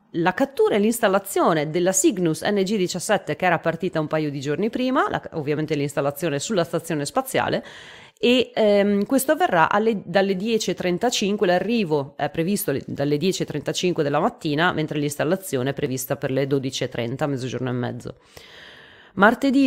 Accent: native